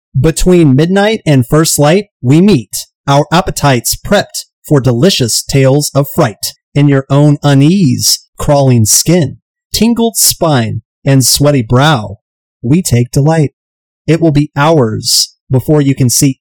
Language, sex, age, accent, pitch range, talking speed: English, male, 30-49, American, 125-165 Hz, 135 wpm